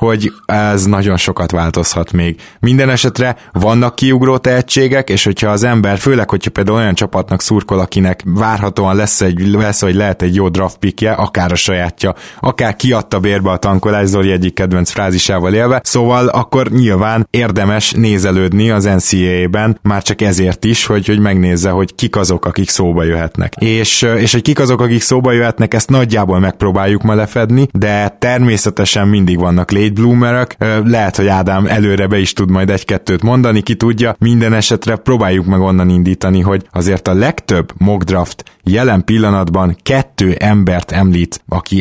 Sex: male